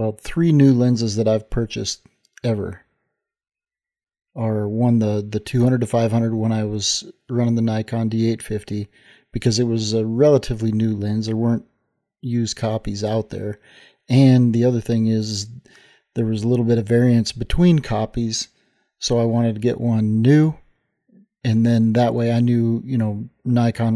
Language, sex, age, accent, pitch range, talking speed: English, male, 40-59, American, 110-125 Hz, 165 wpm